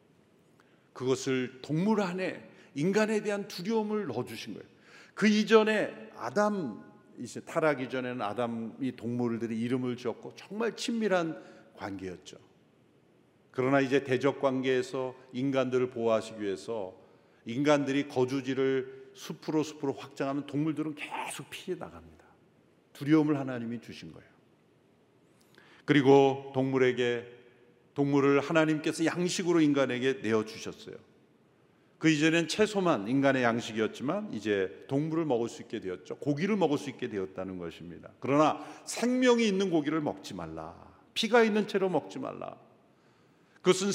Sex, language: male, Korean